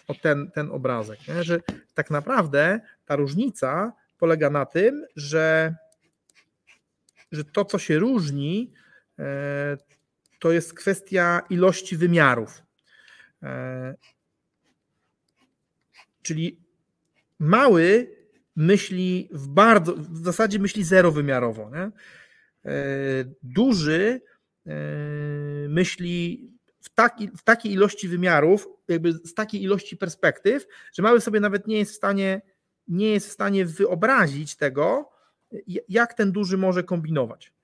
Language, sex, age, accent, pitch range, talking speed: Polish, male, 40-59, native, 155-210 Hz, 100 wpm